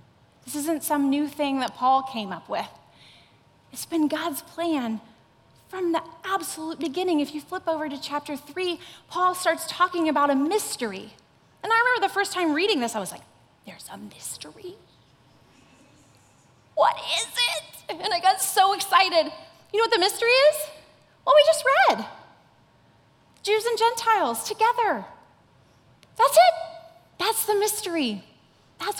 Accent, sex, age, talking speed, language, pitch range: American, female, 30-49, 150 wpm, English, 245-350 Hz